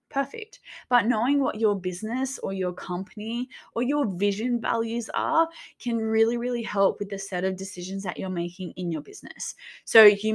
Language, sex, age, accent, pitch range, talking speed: English, female, 10-29, Australian, 190-235 Hz, 180 wpm